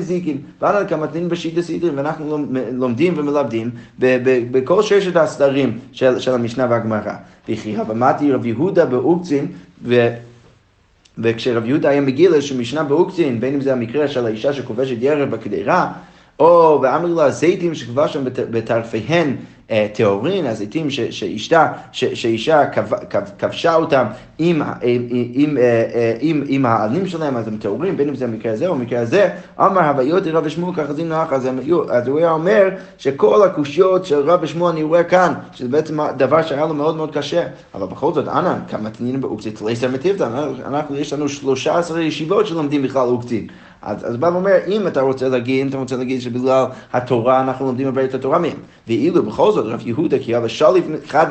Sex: male